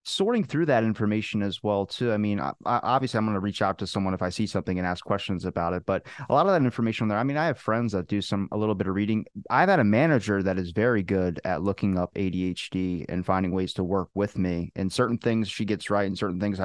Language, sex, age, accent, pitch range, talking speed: English, male, 30-49, American, 95-115 Hz, 265 wpm